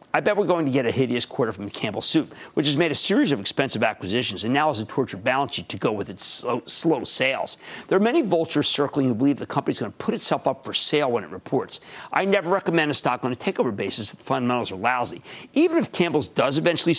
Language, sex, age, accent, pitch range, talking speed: English, male, 50-69, American, 125-185 Hz, 255 wpm